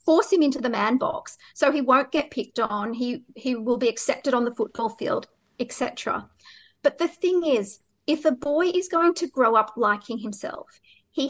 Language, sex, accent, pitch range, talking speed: English, female, Australian, 225-285 Hz, 200 wpm